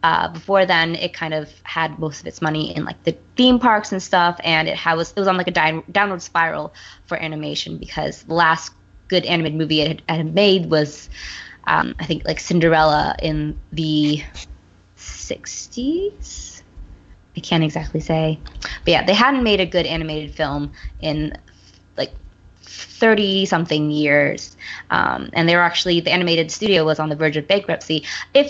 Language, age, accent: English, 20-39, American